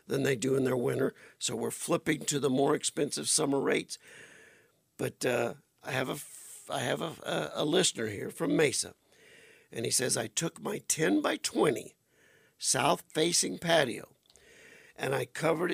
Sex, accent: male, American